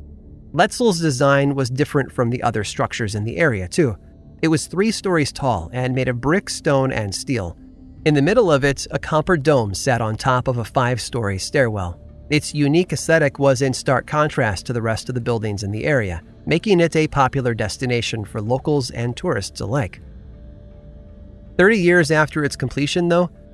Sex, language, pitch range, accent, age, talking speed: male, English, 105-150 Hz, American, 30-49, 180 wpm